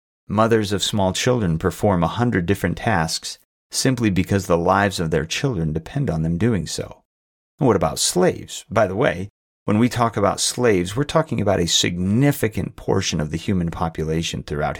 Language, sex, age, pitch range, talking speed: English, male, 40-59, 85-115 Hz, 175 wpm